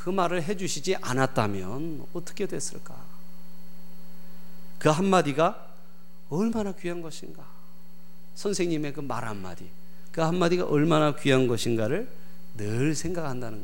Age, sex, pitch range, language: 40-59, male, 125-180 Hz, Korean